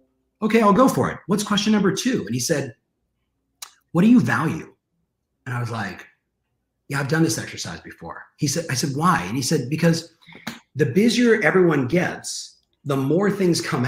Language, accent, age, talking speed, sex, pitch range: English, American, 40-59, 185 wpm, male, 130-180 Hz